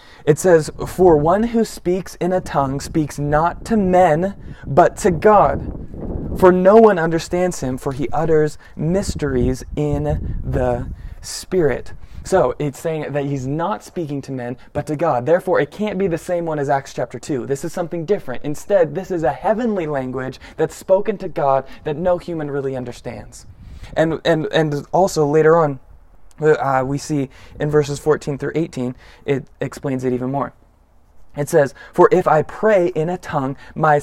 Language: English